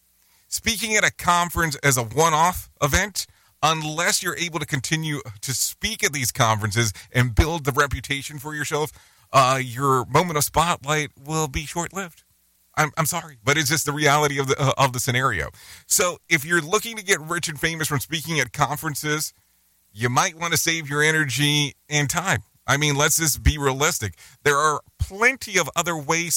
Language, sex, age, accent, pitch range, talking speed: English, male, 40-59, American, 115-155 Hz, 180 wpm